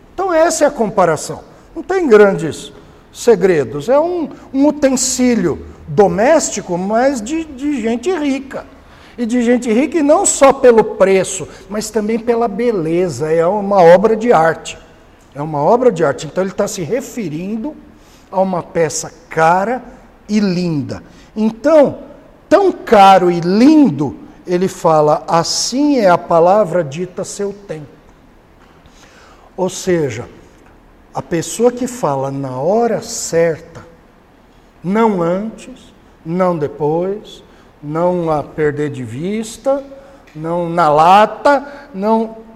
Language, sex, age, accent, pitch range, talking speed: Portuguese, male, 60-79, Brazilian, 165-245 Hz, 125 wpm